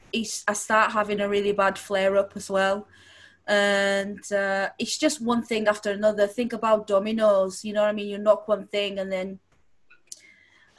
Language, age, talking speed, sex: English, 20-39, 180 wpm, female